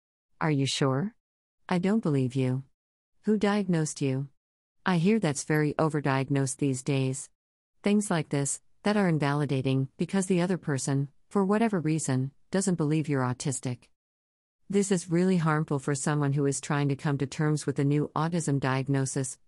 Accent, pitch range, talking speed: American, 130-170 Hz, 160 wpm